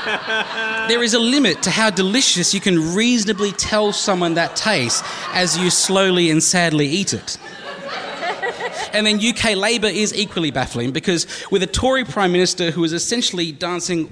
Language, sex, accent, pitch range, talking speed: English, male, Australian, 145-195 Hz, 160 wpm